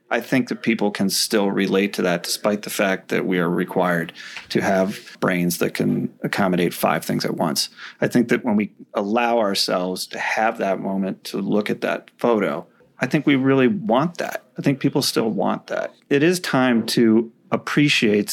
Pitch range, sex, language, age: 100-125 Hz, male, English, 30-49